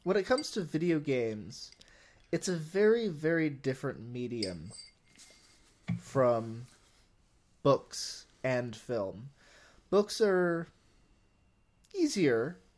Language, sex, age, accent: English, male, 20-39, American